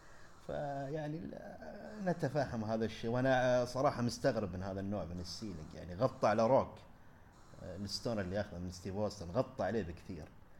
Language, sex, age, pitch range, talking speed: Arabic, male, 30-49, 105-135 Hz, 135 wpm